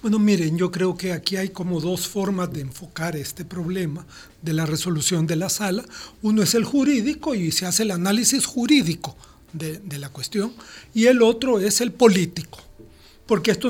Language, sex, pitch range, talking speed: Spanish, male, 180-230 Hz, 185 wpm